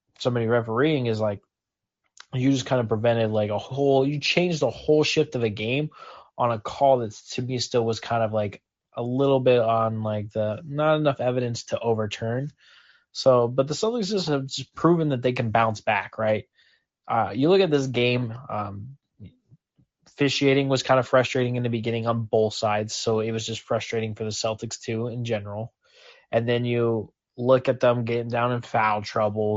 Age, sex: 20-39, male